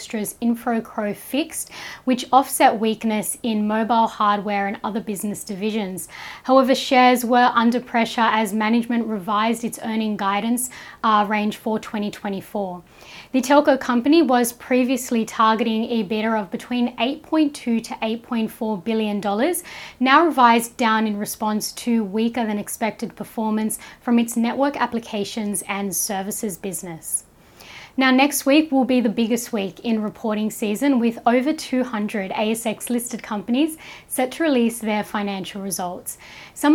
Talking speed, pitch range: 125 wpm, 210-245 Hz